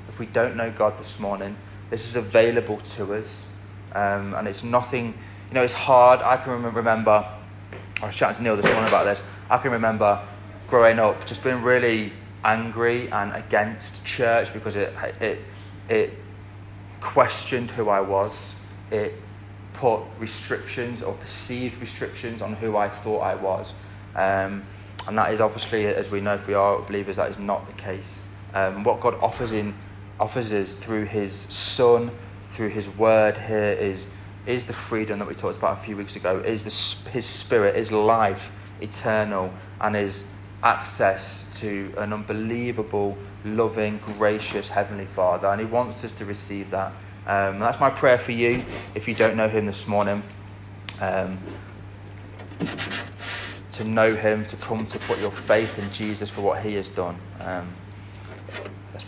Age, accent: 20-39, British